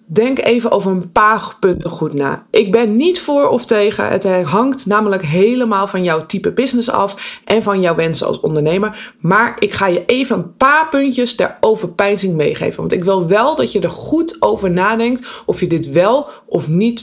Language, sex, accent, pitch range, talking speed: Dutch, female, Dutch, 170-235 Hz, 195 wpm